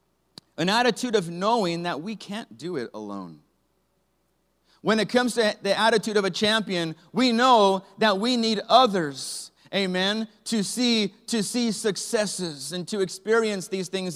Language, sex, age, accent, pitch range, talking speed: English, male, 30-49, American, 160-205 Hz, 155 wpm